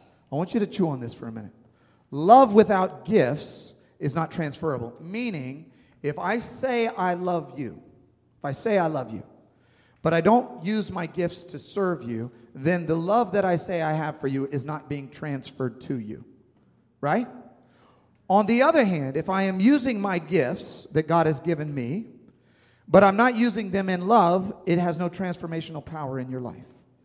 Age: 40-59